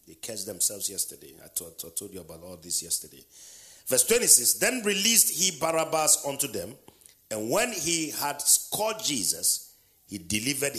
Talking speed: 165 wpm